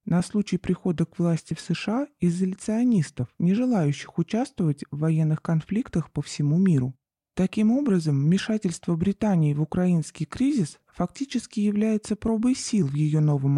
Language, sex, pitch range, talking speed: Russian, male, 150-195 Hz, 135 wpm